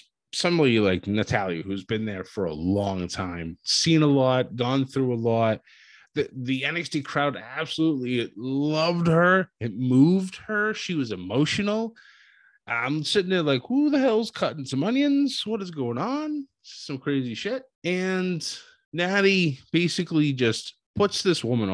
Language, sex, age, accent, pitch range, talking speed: English, male, 20-39, American, 115-155 Hz, 150 wpm